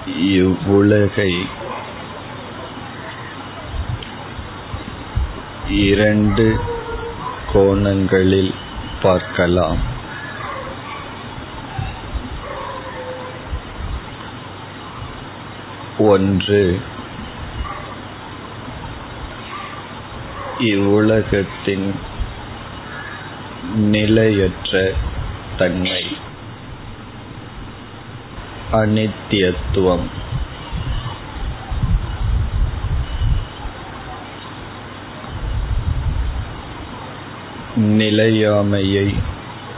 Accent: native